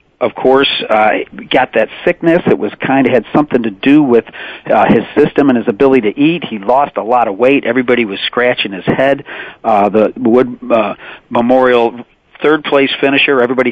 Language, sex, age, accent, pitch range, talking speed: English, male, 40-59, American, 120-140 Hz, 195 wpm